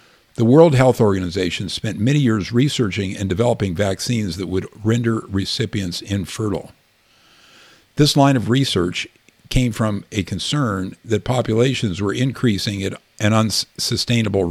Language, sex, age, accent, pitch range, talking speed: English, male, 50-69, American, 100-120 Hz, 130 wpm